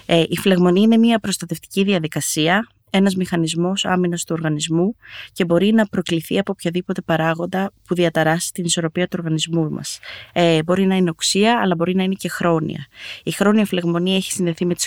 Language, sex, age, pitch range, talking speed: Greek, female, 20-39, 165-185 Hz, 170 wpm